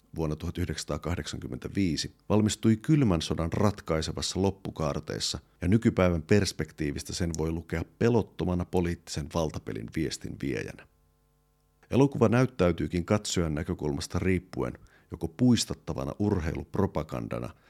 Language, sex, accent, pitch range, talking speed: Finnish, male, native, 75-100 Hz, 90 wpm